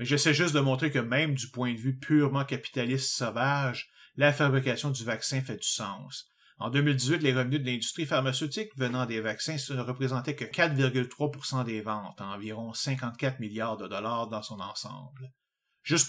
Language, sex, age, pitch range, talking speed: French, male, 30-49, 120-145 Hz, 175 wpm